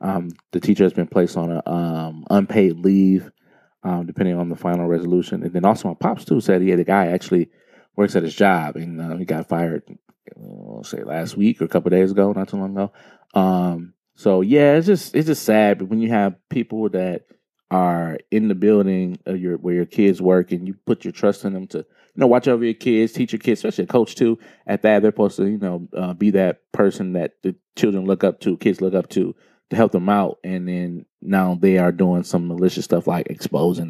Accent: American